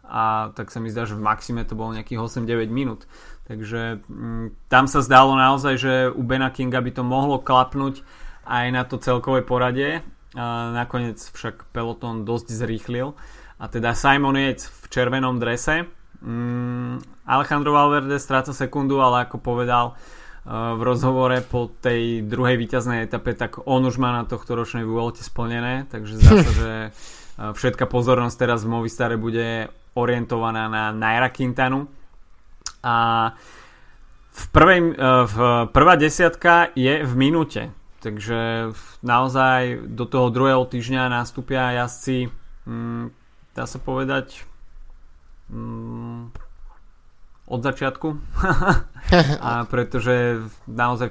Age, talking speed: 20-39, 125 wpm